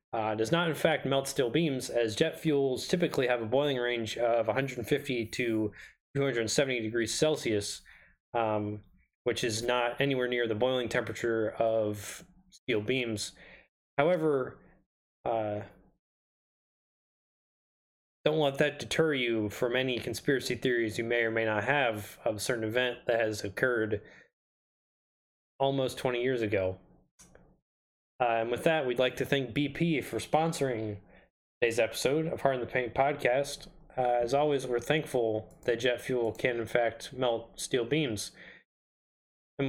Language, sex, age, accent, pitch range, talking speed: English, male, 20-39, American, 115-145 Hz, 145 wpm